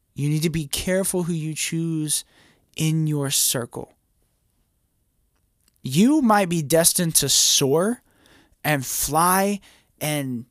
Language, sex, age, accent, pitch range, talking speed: English, male, 20-39, American, 130-170 Hz, 115 wpm